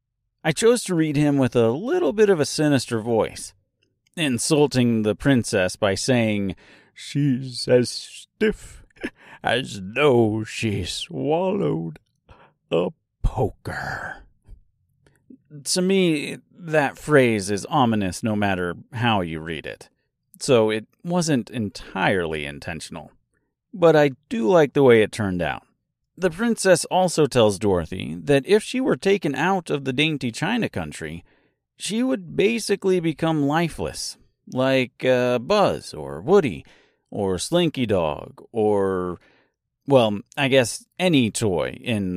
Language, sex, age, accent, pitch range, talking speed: English, male, 30-49, American, 105-160 Hz, 125 wpm